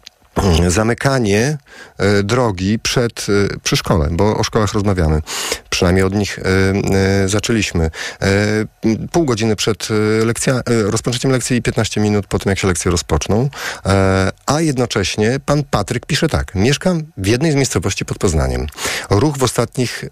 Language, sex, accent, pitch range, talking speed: Polish, male, native, 100-130 Hz, 150 wpm